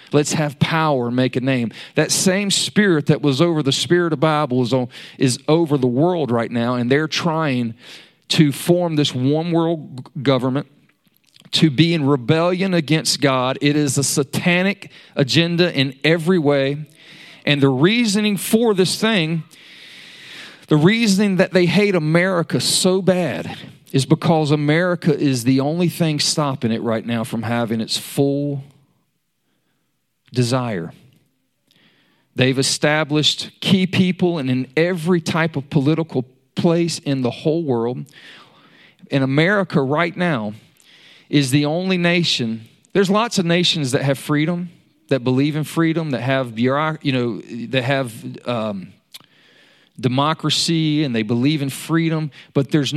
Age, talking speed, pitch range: 40-59, 145 wpm, 130-170 Hz